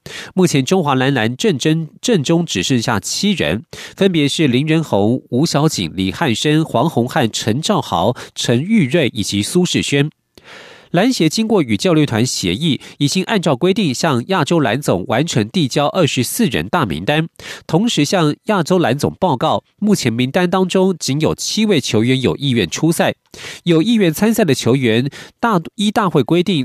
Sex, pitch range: male, 125-185 Hz